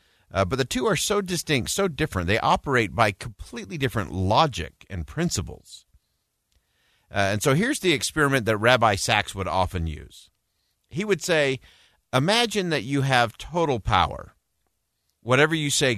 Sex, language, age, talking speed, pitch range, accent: male, English, 50-69, 155 wpm, 95-145 Hz, American